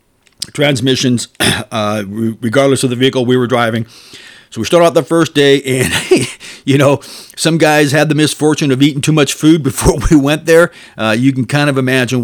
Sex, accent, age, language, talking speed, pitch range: male, American, 50-69, English, 190 wpm, 125-165 Hz